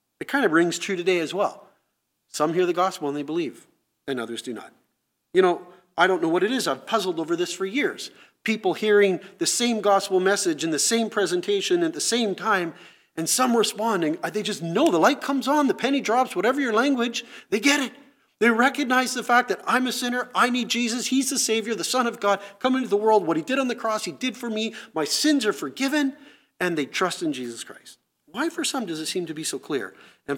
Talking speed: 235 wpm